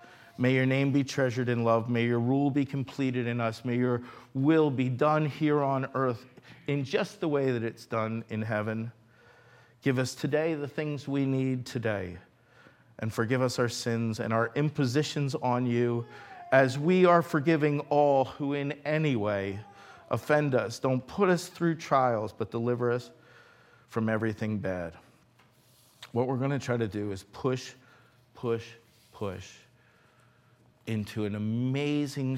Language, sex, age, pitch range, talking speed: English, male, 50-69, 115-150 Hz, 160 wpm